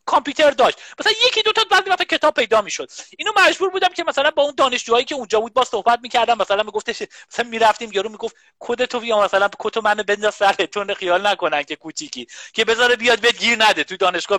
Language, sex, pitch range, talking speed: Persian, male, 205-290 Hz, 225 wpm